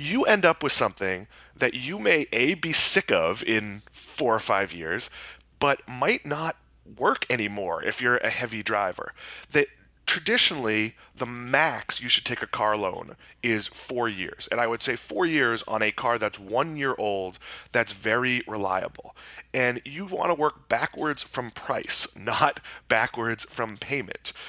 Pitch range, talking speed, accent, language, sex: 110-140 Hz, 165 wpm, American, English, male